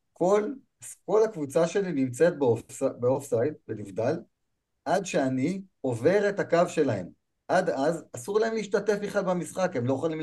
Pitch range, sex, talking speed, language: 125-185 Hz, male, 140 wpm, Hebrew